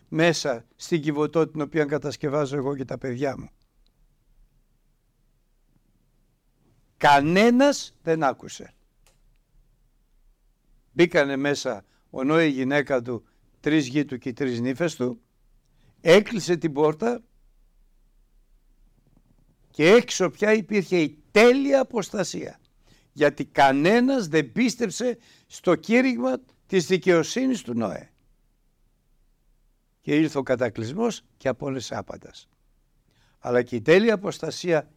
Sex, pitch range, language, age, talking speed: male, 125-170 Hz, Greek, 60-79, 105 wpm